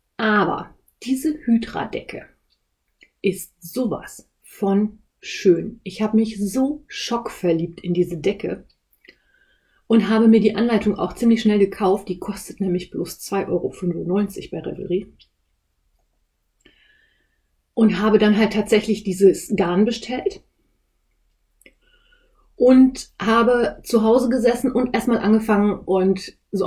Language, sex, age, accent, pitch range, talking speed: German, female, 30-49, German, 180-225 Hz, 110 wpm